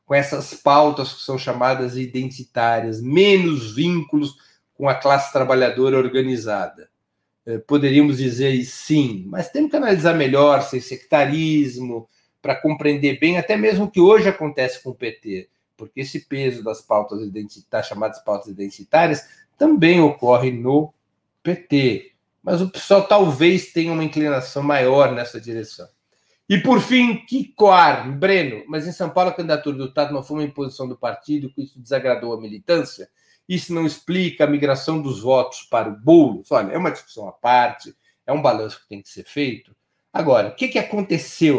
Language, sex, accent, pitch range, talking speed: Portuguese, male, Brazilian, 125-165 Hz, 160 wpm